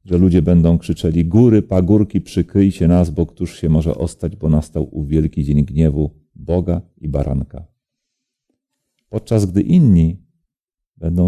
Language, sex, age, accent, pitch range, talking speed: Polish, male, 40-59, native, 80-105 Hz, 140 wpm